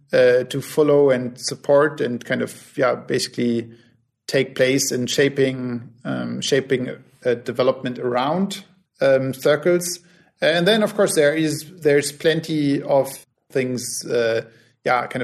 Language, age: English, 50-69